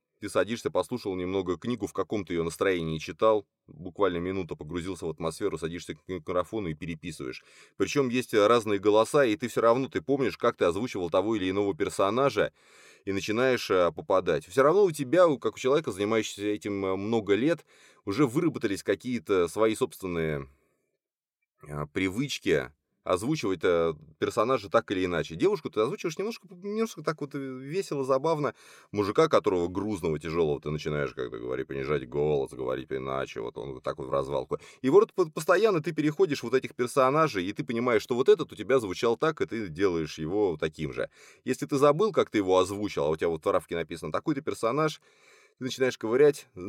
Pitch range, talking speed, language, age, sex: 95-145 Hz, 170 wpm, Russian, 20-39, male